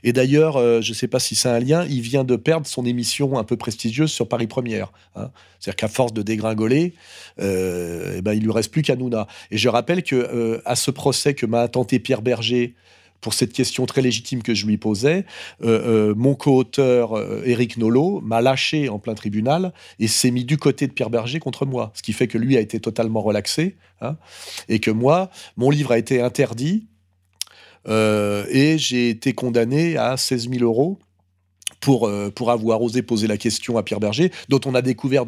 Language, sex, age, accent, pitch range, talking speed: French, male, 40-59, French, 110-135 Hz, 210 wpm